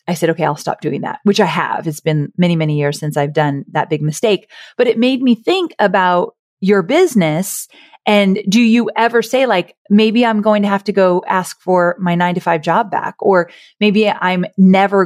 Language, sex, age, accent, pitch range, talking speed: English, female, 30-49, American, 165-210 Hz, 215 wpm